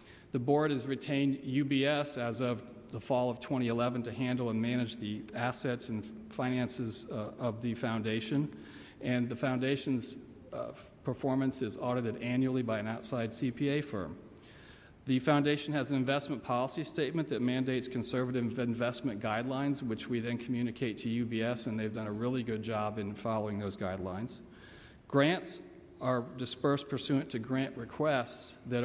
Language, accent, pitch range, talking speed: English, American, 115-135 Hz, 150 wpm